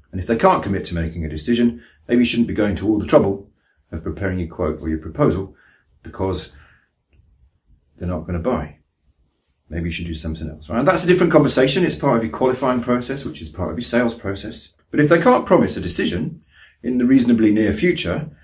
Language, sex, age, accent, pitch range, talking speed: English, male, 40-59, British, 80-115 Hz, 220 wpm